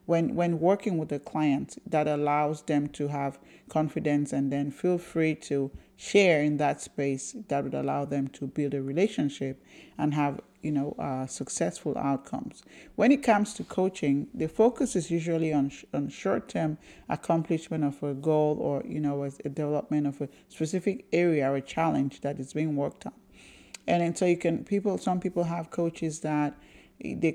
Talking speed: 180 wpm